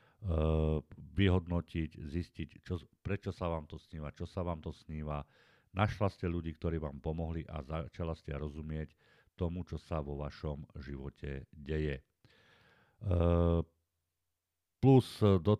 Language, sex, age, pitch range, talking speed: Slovak, male, 50-69, 75-90 Hz, 125 wpm